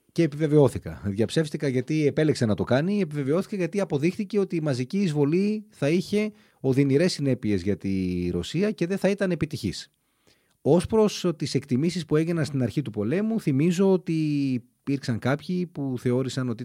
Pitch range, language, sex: 100-150 Hz, Greek, male